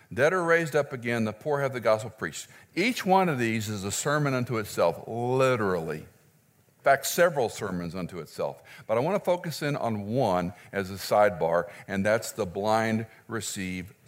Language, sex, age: English, male, 60-79